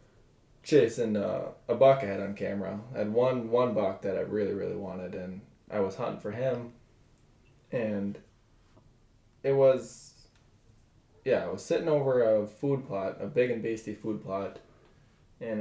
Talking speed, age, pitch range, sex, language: 160 wpm, 20-39, 105-125 Hz, male, English